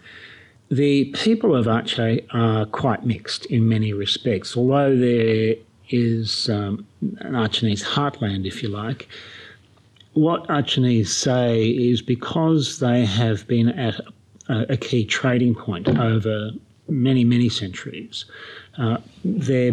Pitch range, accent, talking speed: 110-125 Hz, Australian, 120 wpm